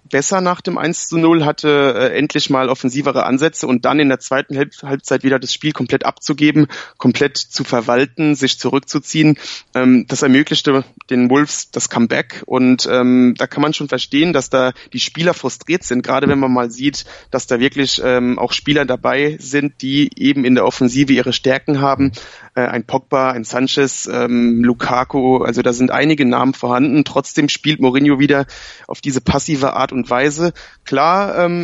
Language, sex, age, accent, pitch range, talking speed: German, male, 30-49, German, 130-150 Hz, 175 wpm